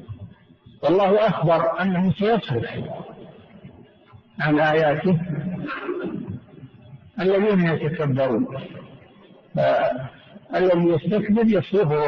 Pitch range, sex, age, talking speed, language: 140-185 Hz, male, 60-79, 60 wpm, Arabic